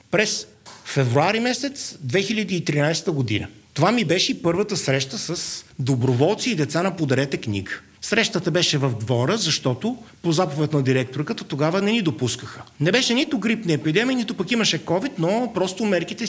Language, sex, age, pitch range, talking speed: Bulgarian, male, 50-69, 140-200 Hz, 155 wpm